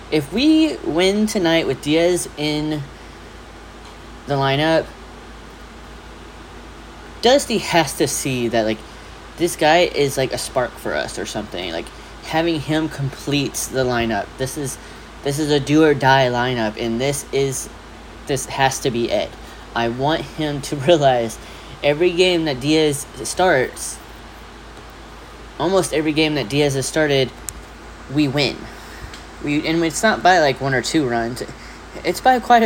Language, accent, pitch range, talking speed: English, American, 125-155 Hz, 145 wpm